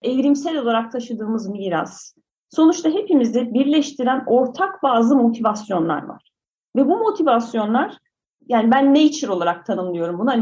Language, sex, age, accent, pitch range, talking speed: Turkish, female, 40-59, native, 205-265 Hz, 120 wpm